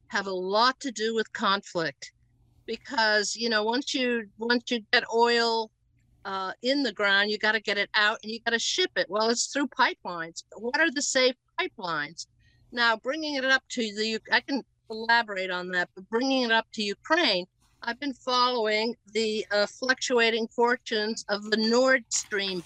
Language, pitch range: English, 195-245 Hz